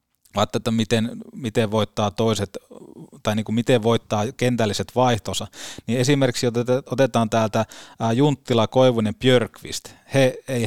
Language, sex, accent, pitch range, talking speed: Finnish, male, native, 105-130 Hz, 125 wpm